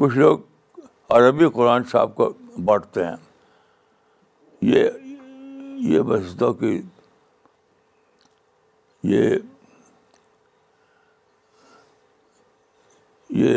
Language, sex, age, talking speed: Urdu, male, 60-79, 60 wpm